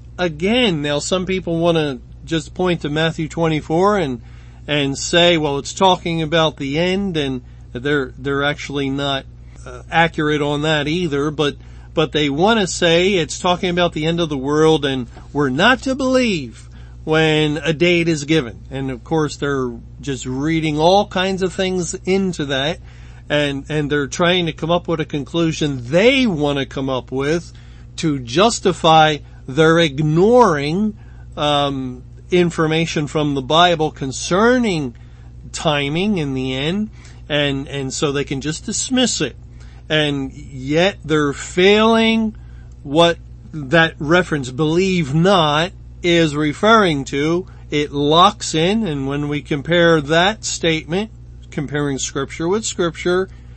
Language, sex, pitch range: English, male, 140-175 Hz